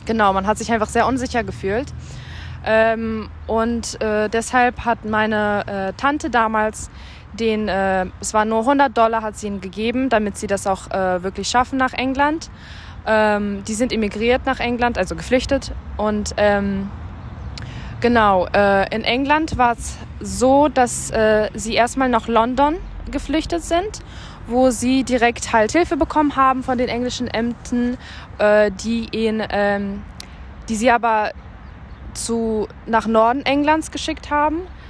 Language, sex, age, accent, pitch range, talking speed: German, female, 20-39, German, 210-250 Hz, 145 wpm